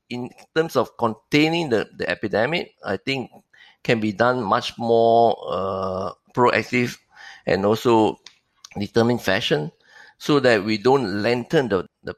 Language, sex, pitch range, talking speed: English, male, 95-125 Hz, 135 wpm